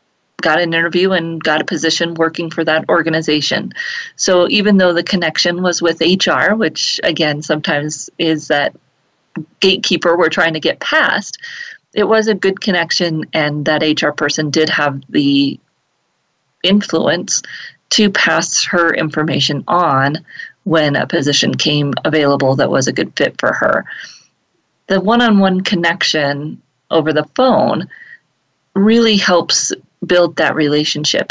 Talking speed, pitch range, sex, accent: 135 wpm, 155-195 Hz, female, American